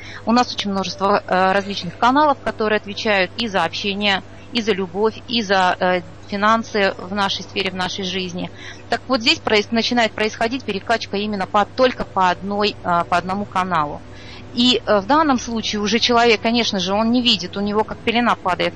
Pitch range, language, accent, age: 185-230 Hz, Russian, native, 30-49